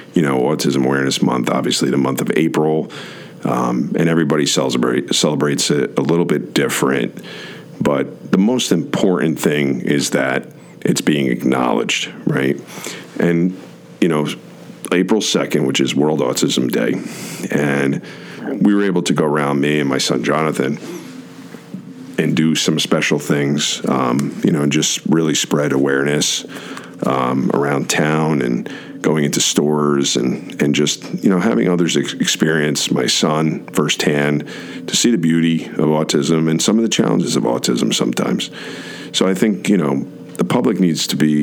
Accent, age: American, 50-69